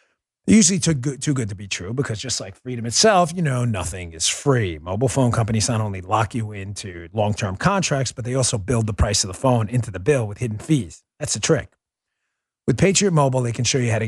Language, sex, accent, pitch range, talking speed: English, male, American, 105-140 Hz, 230 wpm